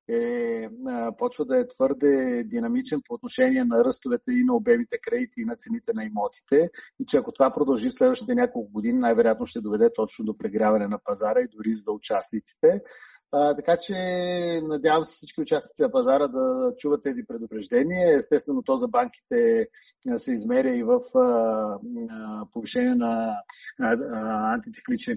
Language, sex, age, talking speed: Bulgarian, male, 40-59, 155 wpm